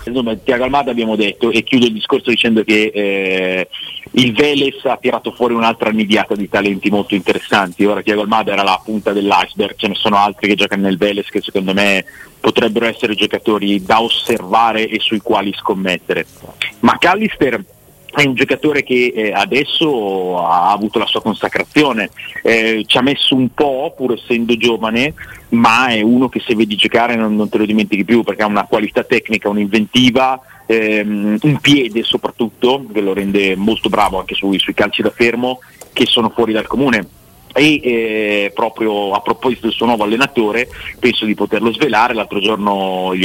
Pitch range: 100-120 Hz